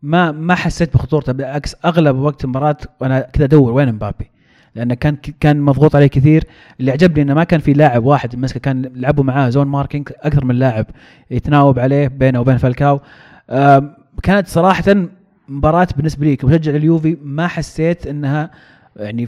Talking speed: 165 wpm